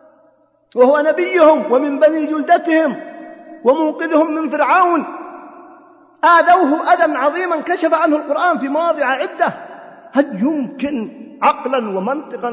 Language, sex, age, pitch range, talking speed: Arabic, male, 40-59, 240-325 Hz, 100 wpm